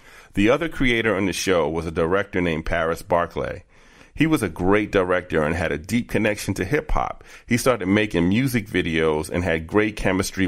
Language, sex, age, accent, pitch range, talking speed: English, male, 40-59, American, 85-105 Hz, 190 wpm